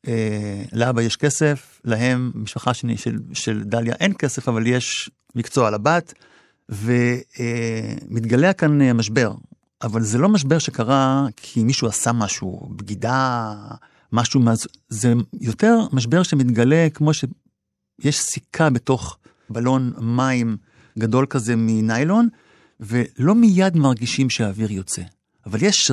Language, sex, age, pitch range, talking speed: Hebrew, male, 50-69, 115-140 Hz, 120 wpm